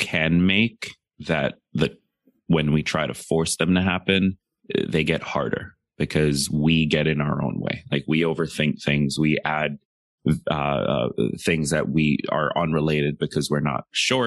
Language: English